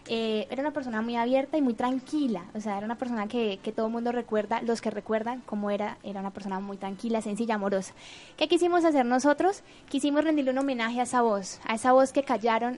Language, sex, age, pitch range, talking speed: Spanish, female, 10-29, 220-260 Hz, 225 wpm